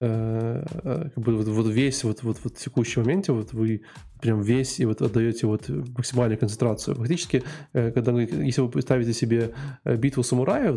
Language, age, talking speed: Russian, 20-39, 160 wpm